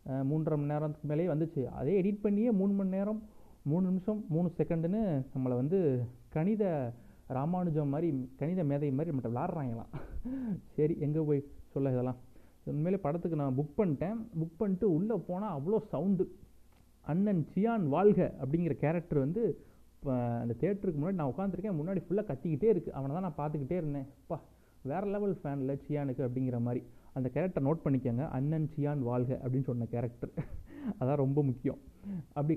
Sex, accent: male, native